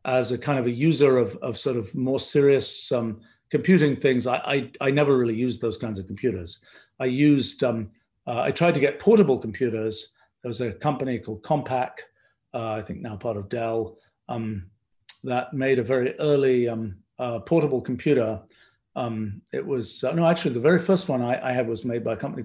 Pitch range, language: 115-135 Hz, English